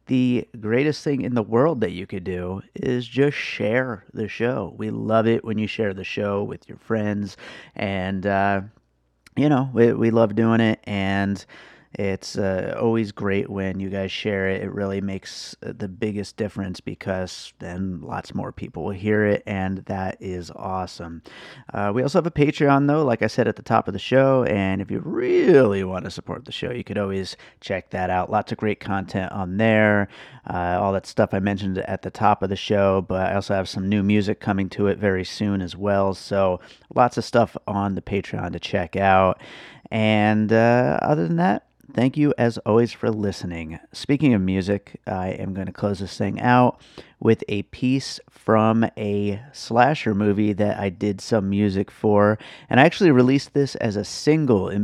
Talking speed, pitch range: 195 wpm, 95-115 Hz